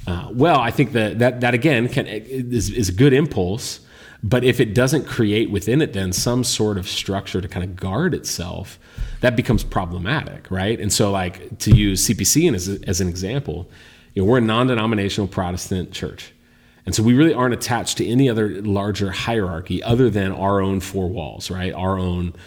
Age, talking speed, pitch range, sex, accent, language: 30-49, 190 wpm, 95-115 Hz, male, American, English